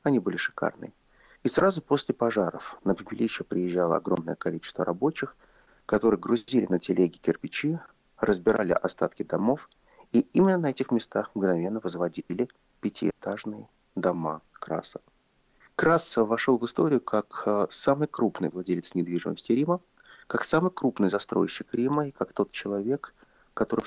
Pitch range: 95-130 Hz